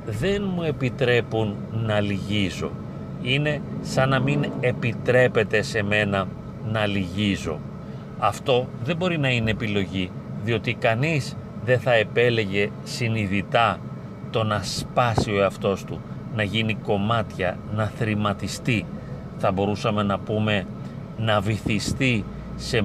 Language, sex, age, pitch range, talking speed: Greek, male, 40-59, 105-125 Hz, 115 wpm